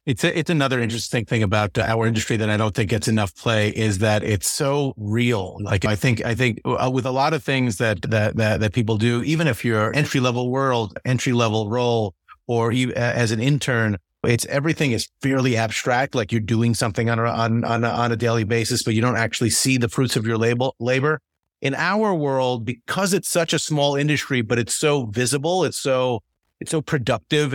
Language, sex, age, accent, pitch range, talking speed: English, male, 30-49, American, 115-135 Hz, 215 wpm